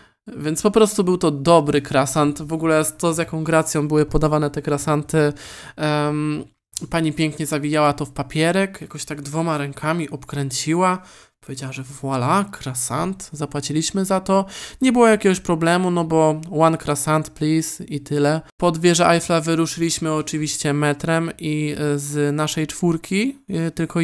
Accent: native